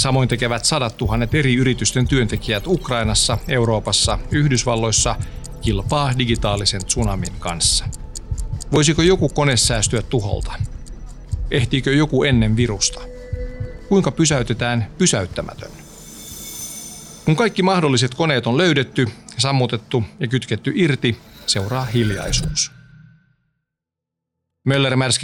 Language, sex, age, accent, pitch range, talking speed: Finnish, male, 40-59, native, 110-140 Hz, 95 wpm